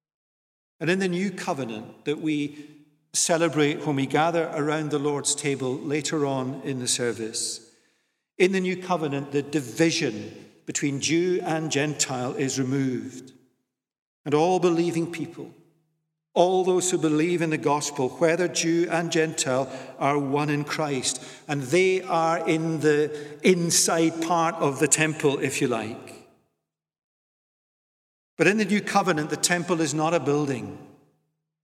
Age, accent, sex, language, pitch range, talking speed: 50-69, British, male, English, 145-175 Hz, 140 wpm